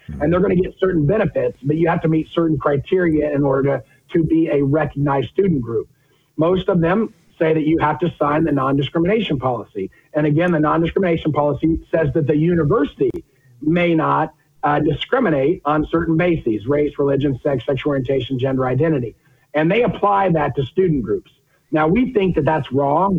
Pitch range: 145-170 Hz